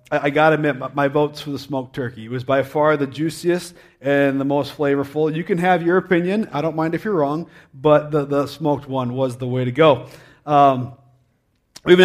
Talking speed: 220 wpm